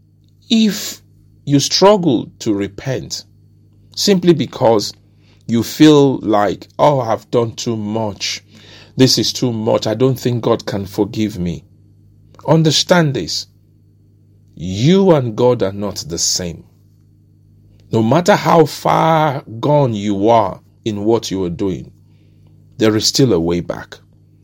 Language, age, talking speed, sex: English, 50-69, 130 wpm, male